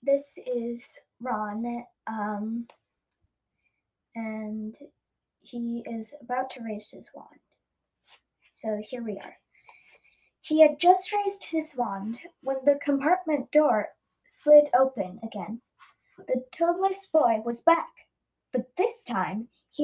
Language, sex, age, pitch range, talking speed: English, female, 10-29, 235-330 Hz, 115 wpm